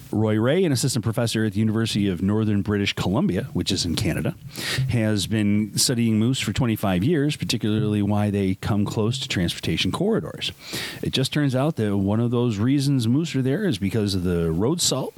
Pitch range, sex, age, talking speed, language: 95-135 Hz, male, 40-59, 195 wpm, English